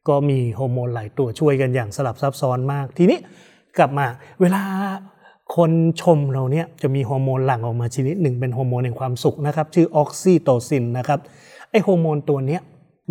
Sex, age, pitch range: male, 30-49, 130-155 Hz